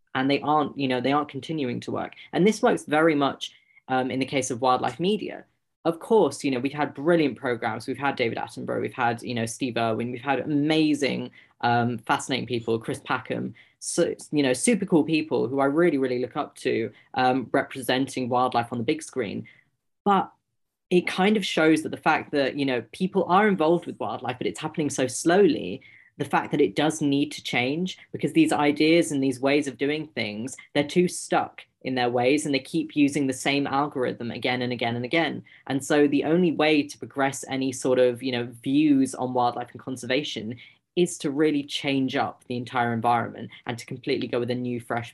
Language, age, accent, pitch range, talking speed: English, 20-39, British, 125-150 Hz, 205 wpm